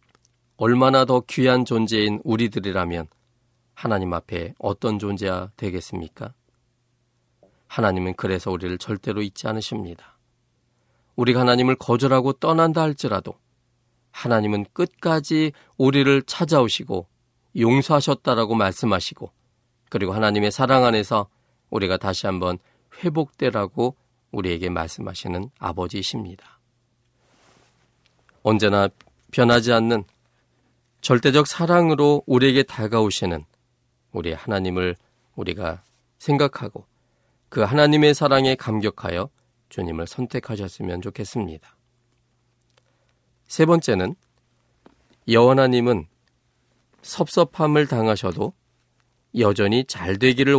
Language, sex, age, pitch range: Korean, male, 40-59, 100-130 Hz